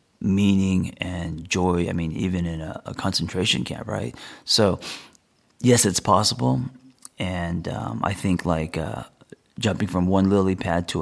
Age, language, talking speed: 30-49, English, 155 wpm